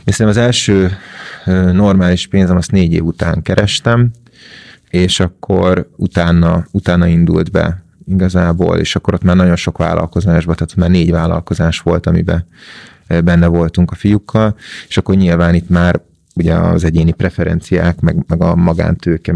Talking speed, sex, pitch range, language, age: 145 wpm, male, 85-95 Hz, Hungarian, 30-49